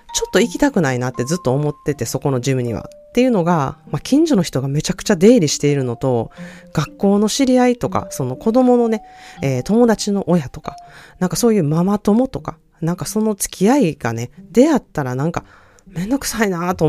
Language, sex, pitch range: Japanese, female, 140-235 Hz